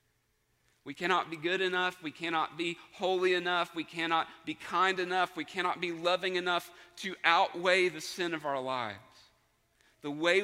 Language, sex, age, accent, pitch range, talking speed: English, male, 40-59, American, 135-180 Hz, 165 wpm